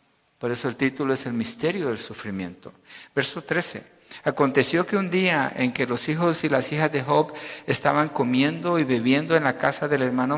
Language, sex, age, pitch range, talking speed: Spanish, male, 50-69, 115-140 Hz, 190 wpm